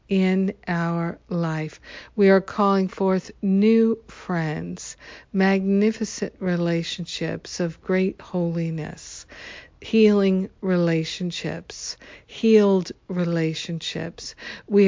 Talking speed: 75 wpm